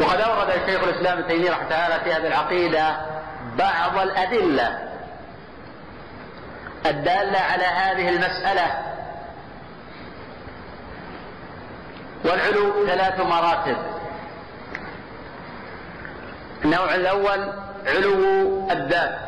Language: Arabic